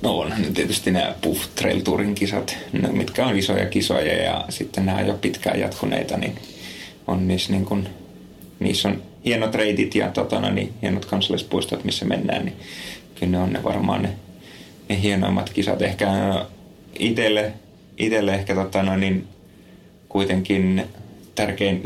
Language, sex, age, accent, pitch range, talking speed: Finnish, male, 30-49, native, 95-105 Hz, 140 wpm